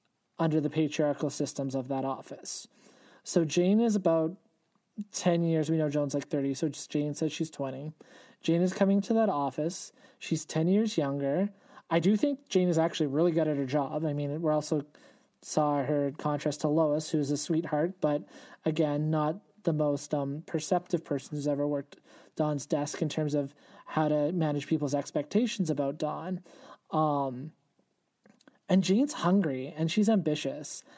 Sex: male